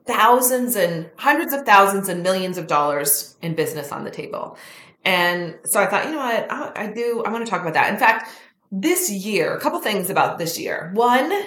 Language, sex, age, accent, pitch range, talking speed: English, female, 30-49, American, 165-220 Hz, 215 wpm